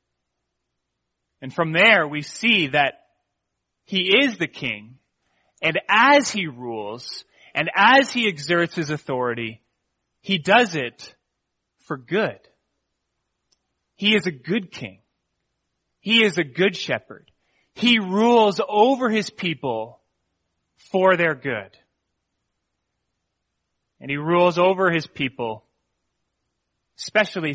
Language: English